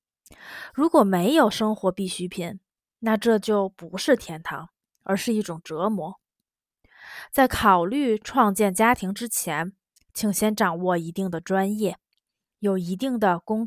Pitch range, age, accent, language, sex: 185-240 Hz, 20-39, native, Chinese, female